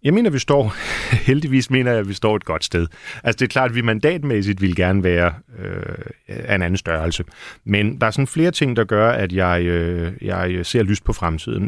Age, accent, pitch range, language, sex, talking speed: 40-59, native, 95-125 Hz, Danish, male, 220 wpm